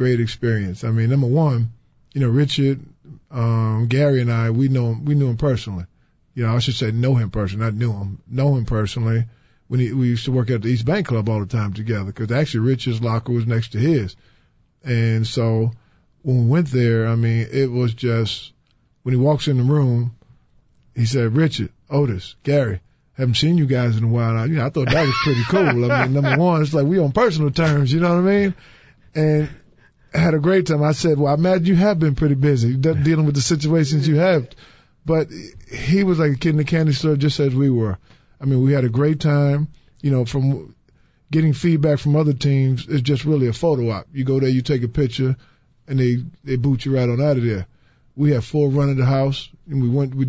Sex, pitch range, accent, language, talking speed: male, 120-145 Hz, American, English, 230 wpm